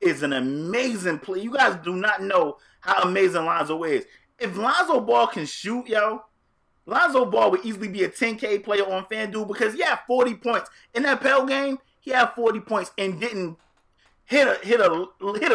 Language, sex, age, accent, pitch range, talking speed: English, male, 30-49, American, 180-250 Hz, 195 wpm